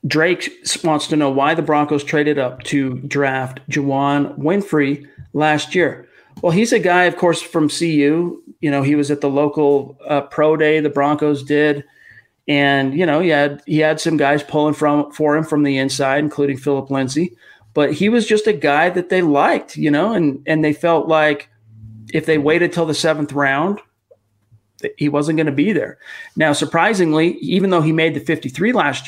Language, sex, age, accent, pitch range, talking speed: English, male, 40-59, American, 140-165 Hz, 190 wpm